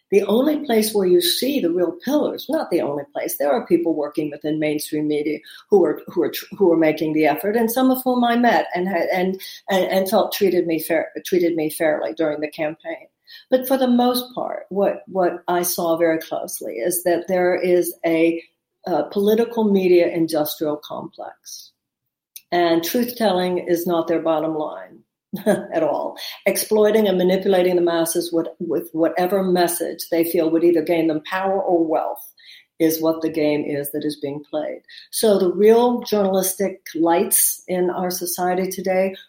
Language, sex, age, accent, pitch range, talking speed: English, female, 60-79, American, 165-205 Hz, 175 wpm